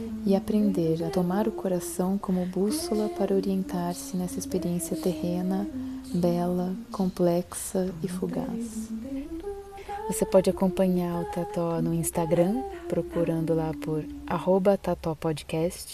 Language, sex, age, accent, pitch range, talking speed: Portuguese, female, 20-39, Brazilian, 170-215 Hz, 105 wpm